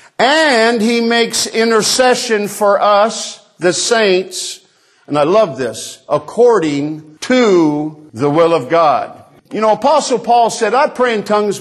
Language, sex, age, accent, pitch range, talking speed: English, male, 50-69, American, 165-230 Hz, 140 wpm